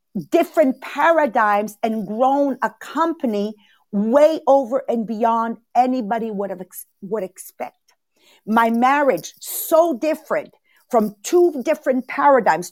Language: English